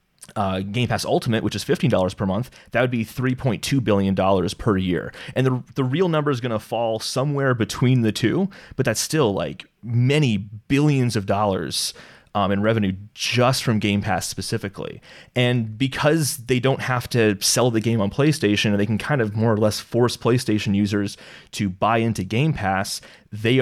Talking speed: 185 wpm